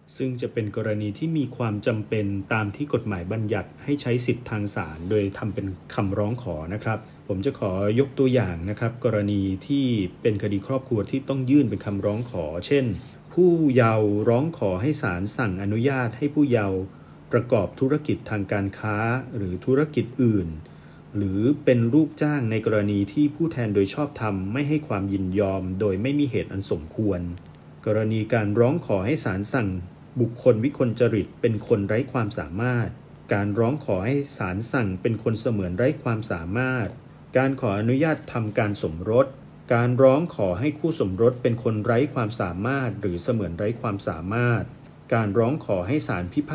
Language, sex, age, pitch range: Thai, male, 30-49, 100-130 Hz